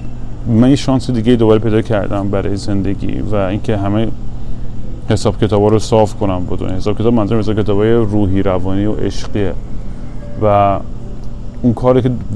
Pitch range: 100-115 Hz